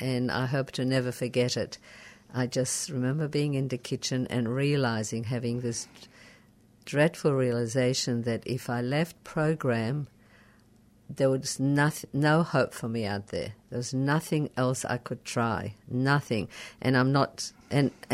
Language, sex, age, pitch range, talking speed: English, female, 50-69, 120-140 Hz, 150 wpm